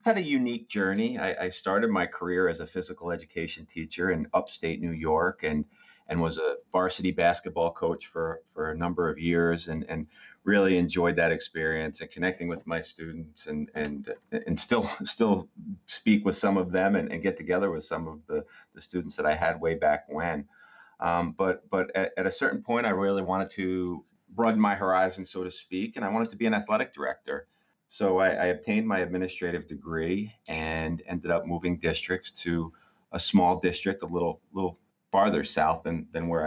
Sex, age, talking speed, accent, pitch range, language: male, 30-49, 195 wpm, American, 80-100 Hz, English